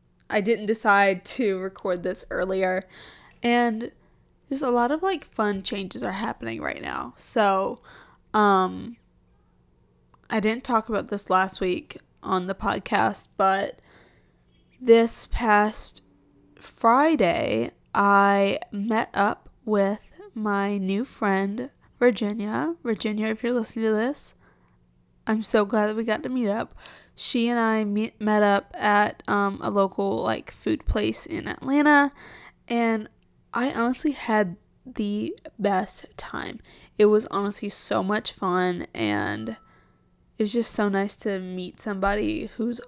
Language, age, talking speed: English, 20-39, 135 wpm